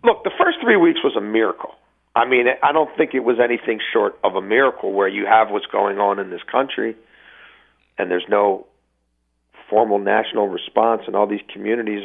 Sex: male